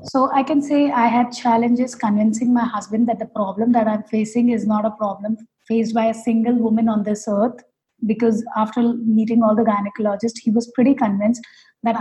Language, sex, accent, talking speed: English, female, Indian, 195 wpm